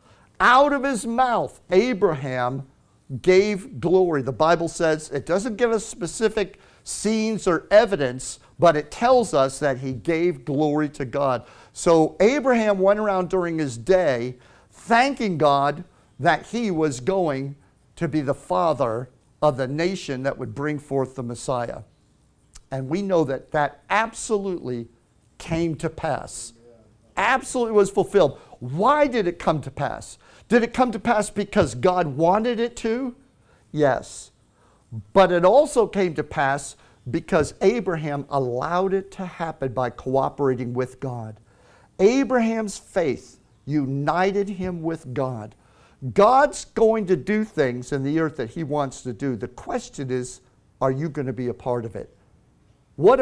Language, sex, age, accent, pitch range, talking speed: English, male, 50-69, American, 135-200 Hz, 150 wpm